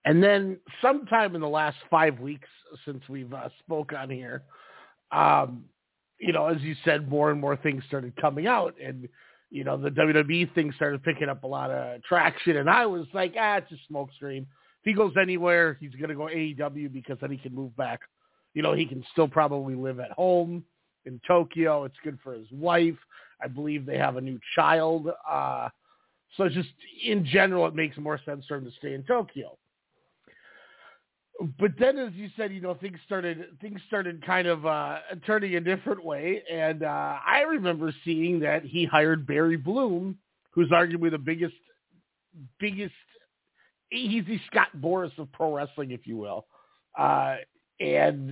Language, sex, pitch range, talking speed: English, male, 145-180 Hz, 185 wpm